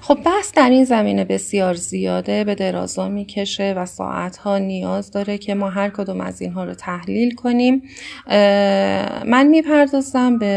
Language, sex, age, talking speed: Persian, female, 30-49, 150 wpm